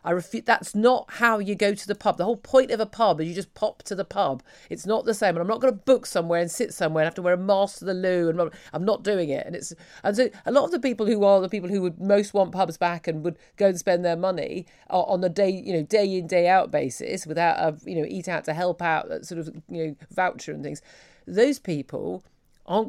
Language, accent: English, British